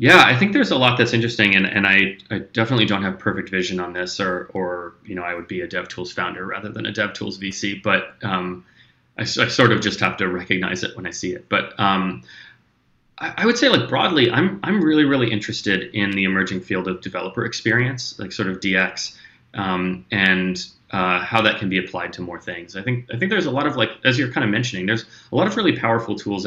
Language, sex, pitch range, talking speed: English, male, 90-110 Hz, 245 wpm